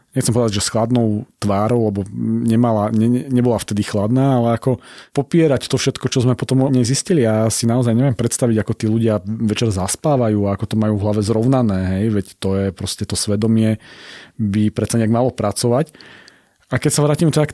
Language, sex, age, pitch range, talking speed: Slovak, male, 30-49, 110-130 Hz, 195 wpm